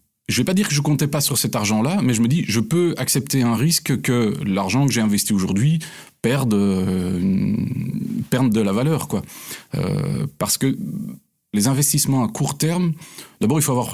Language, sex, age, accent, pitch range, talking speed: French, male, 40-59, French, 105-135 Hz, 200 wpm